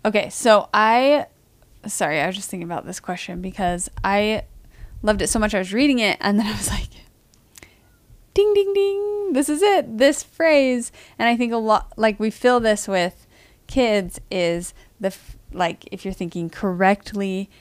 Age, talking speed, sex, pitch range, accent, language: 20-39, 175 wpm, female, 185-230 Hz, American, English